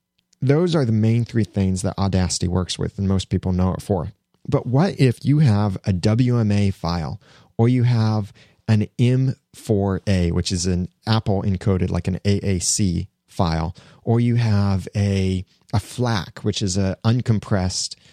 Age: 30-49